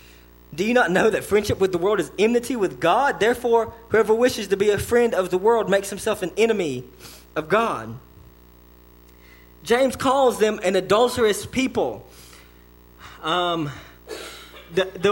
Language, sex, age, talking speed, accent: English, male, 20-39, 145 wpm, American